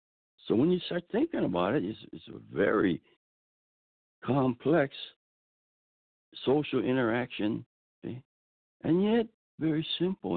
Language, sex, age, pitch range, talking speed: English, male, 60-79, 80-135 Hz, 110 wpm